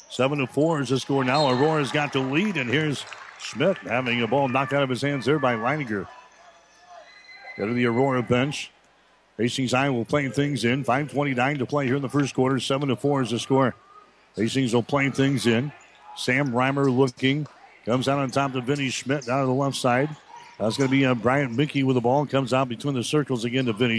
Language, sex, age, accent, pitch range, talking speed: English, male, 50-69, American, 125-145 Hz, 210 wpm